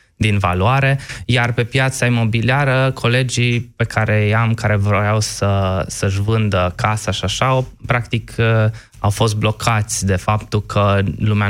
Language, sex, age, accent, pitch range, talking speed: Romanian, male, 20-39, native, 100-120 Hz, 135 wpm